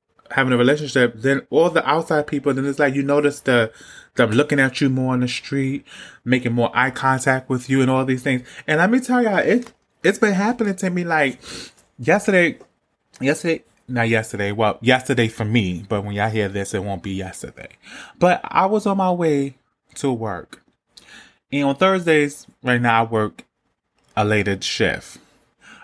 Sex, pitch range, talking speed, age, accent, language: male, 115-150 Hz, 185 wpm, 20-39, American, English